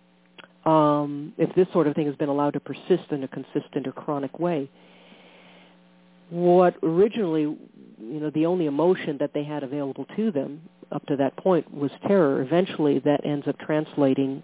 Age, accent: 50-69, American